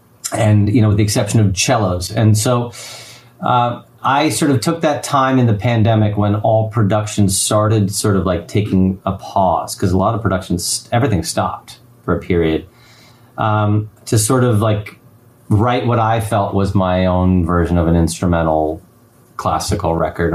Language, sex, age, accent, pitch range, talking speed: English, male, 30-49, American, 95-115 Hz, 170 wpm